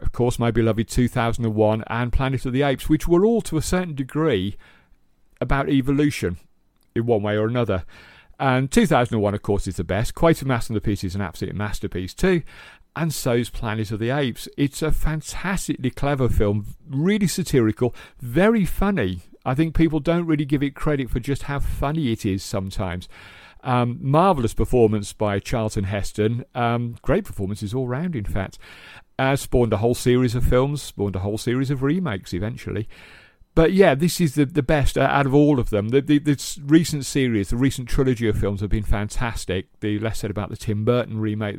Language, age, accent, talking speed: English, 50-69, British, 185 wpm